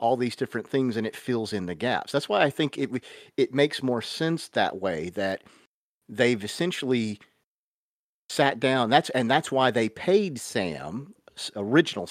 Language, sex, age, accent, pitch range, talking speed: English, male, 50-69, American, 110-150 Hz, 170 wpm